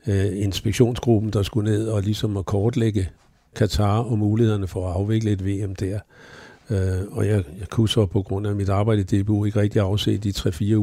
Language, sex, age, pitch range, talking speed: Danish, male, 60-79, 95-110 Hz, 185 wpm